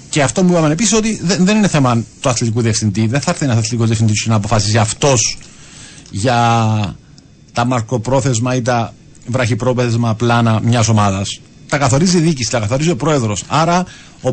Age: 50-69